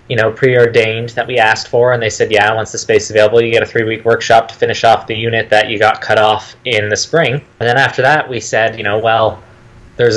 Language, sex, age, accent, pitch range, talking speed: English, male, 20-39, American, 115-130 Hz, 260 wpm